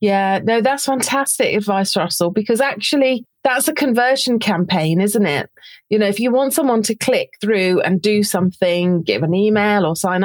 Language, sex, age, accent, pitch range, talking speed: English, female, 30-49, British, 175-225 Hz, 180 wpm